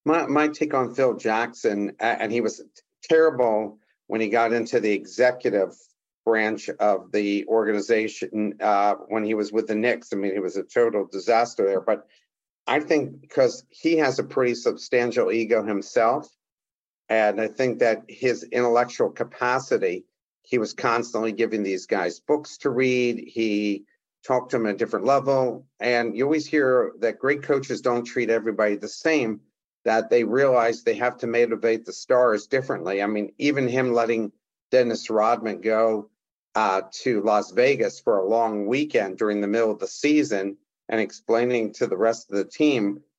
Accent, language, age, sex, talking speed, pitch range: American, English, 50-69, male, 170 wpm, 105-135 Hz